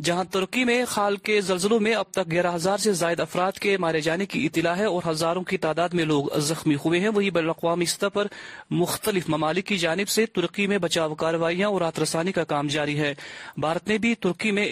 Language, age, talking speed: Urdu, 30-49, 215 wpm